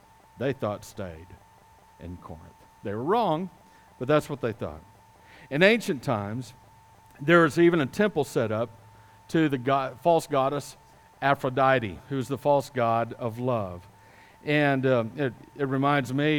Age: 50-69